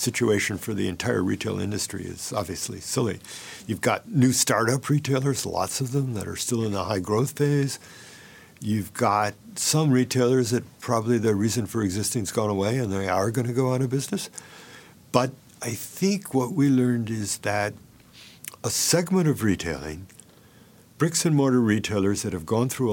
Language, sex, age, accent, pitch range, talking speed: English, male, 60-79, American, 100-130 Hz, 170 wpm